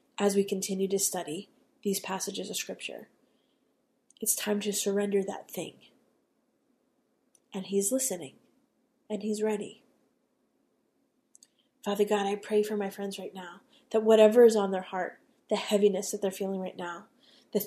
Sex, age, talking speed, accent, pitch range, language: female, 30-49, 150 wpm, American, 200-245 Hz, English